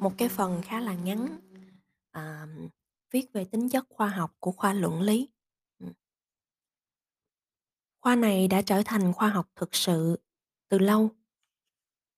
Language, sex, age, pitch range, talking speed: Vietnamese, female, 20-39, 175-225 Hz, 135 wpm